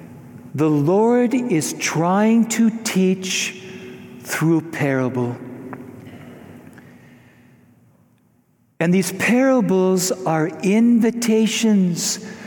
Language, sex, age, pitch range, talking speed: English, male, 60-79, 175-230 Hz, 65 wpm